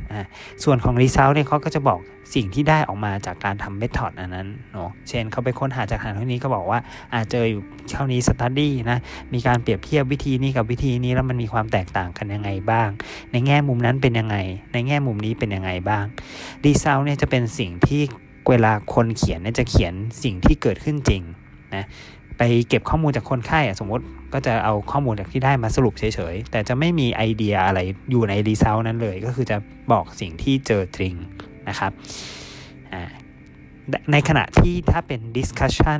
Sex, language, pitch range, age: male, Thai, 100-130 Hz, 20-39